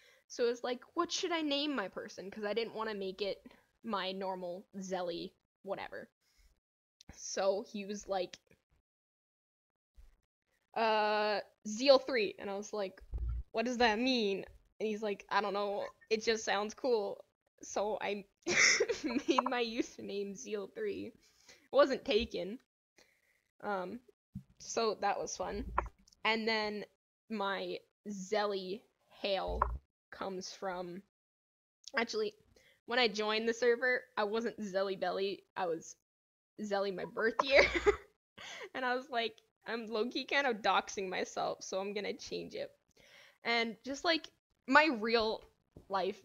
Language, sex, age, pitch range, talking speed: English, female, 10-29, 195-260 Hz, 135 wpm